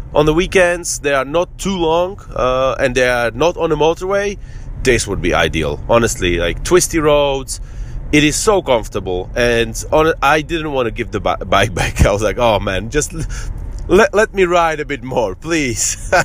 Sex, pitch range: male, 110-155 Hz